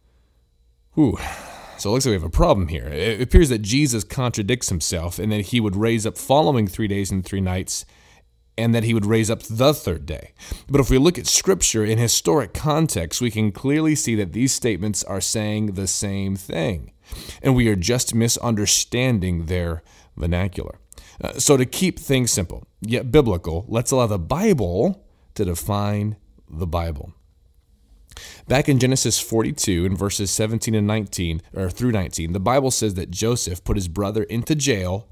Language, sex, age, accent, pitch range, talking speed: English, male, 30-49, American, 85-120 Hz, 175 wpm